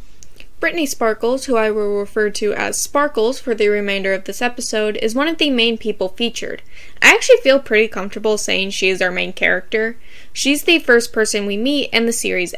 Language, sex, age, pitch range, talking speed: English, female, 10-29, 205-250 Hz, 200 wpm